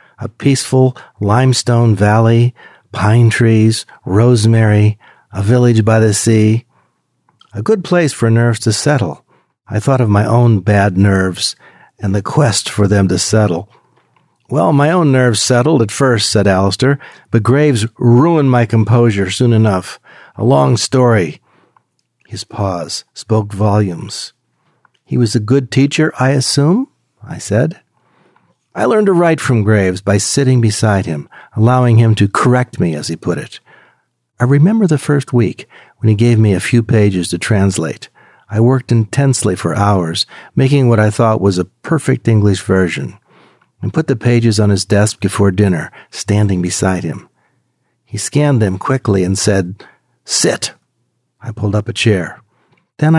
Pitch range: 100-130 Hz